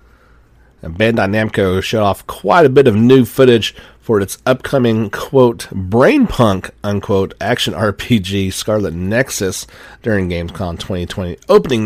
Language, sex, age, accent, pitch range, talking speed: English, male, 40-59, American, 95-120 Hz, 120 wpm